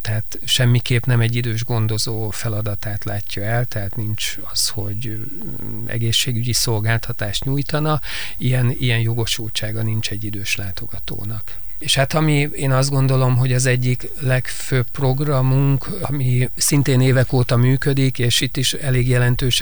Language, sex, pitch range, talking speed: Hungarian, male, 110-125 Hz, 135 wpm